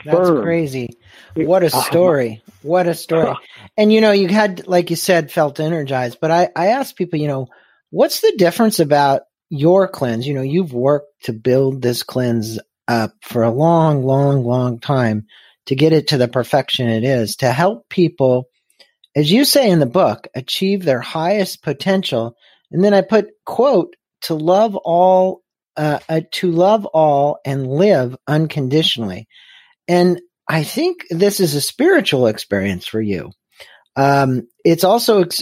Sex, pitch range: male, 130-185 Hz